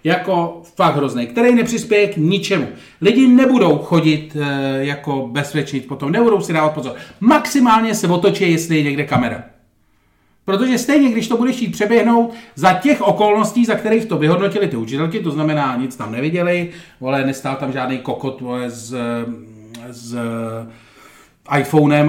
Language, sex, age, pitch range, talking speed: Czech, male, 40-59, 135-200 Hz, 150 wpm